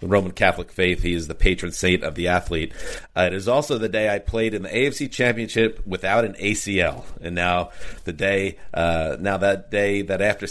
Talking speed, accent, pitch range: 205 wpm, American, 95-110 Hz